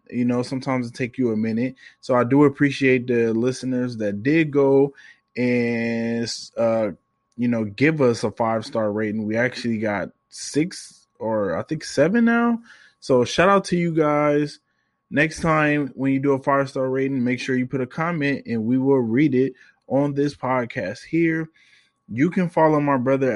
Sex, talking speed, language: male, 175 wpm, English